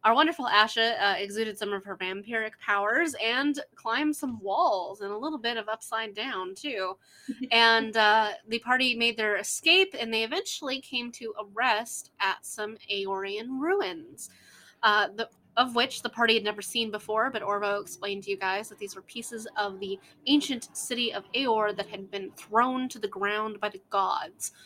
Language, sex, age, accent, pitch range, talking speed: English, female, 20-39, American, 205-245 Hz, 185 wpm